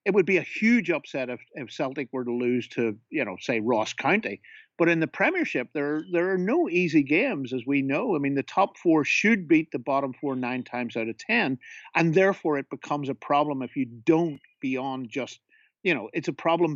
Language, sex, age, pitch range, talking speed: English, male, 50-69, 135-175 Hz, 220 wpm